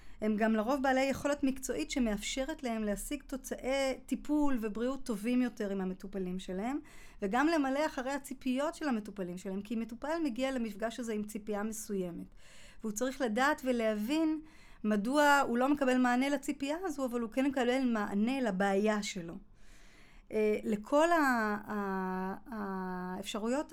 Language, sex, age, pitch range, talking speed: Hebrew, female, 30-49, 205-265 Hz, 130 wpm